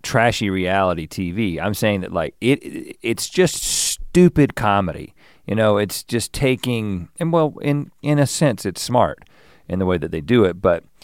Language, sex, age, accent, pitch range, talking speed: English, male, 40-59, American, 80-115 Hz, 185 wpm